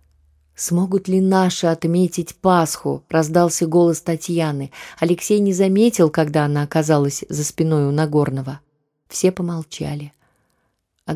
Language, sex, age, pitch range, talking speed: Russian, female, 20-39, 150-185 Hz, 115 wpm